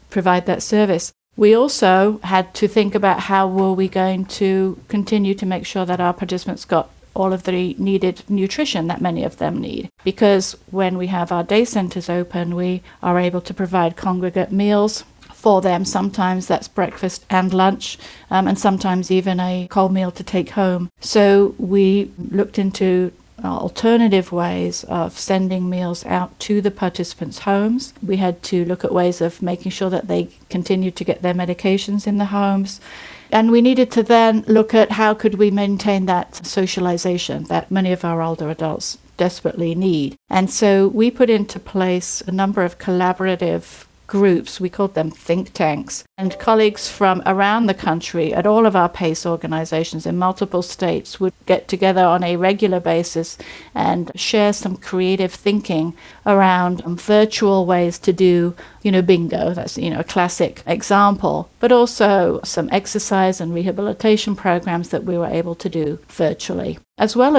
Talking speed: 170 wpm